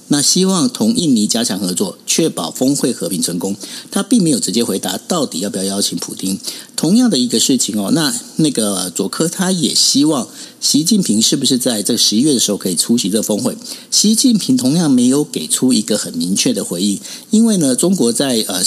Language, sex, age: Chinese, male, 50-69